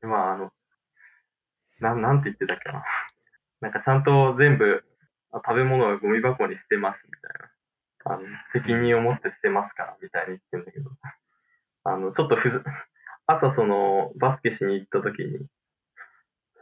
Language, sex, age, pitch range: Japanese, male, 20-39, 110-145 Hz